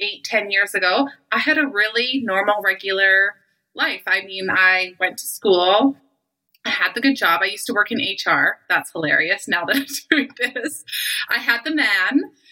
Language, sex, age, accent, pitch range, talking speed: English, female, 30-49, American, 195-275 Hz, 185 wpm